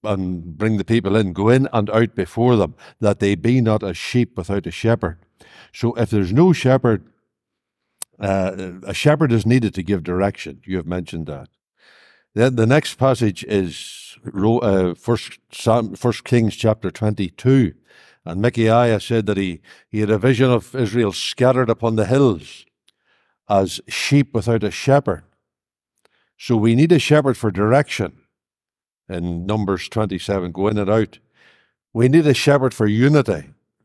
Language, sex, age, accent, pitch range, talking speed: English, male, 60-79, Irish, 100-130 Hz, 150 wpm